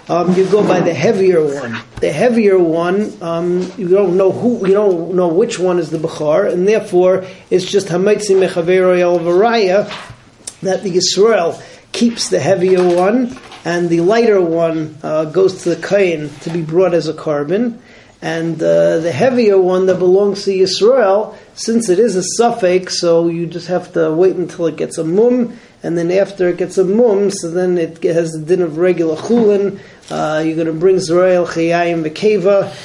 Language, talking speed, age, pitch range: English, 185 wpm, 40-59, 165-195 Hz